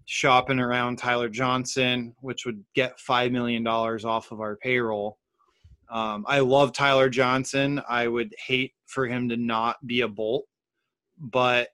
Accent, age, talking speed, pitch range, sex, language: American, 20-39, 155 wpm, 115-130 Hz, male, English